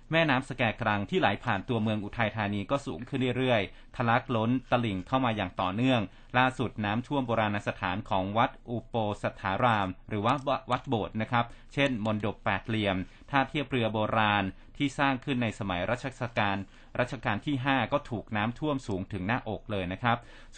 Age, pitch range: 30-49, 110-135 Hz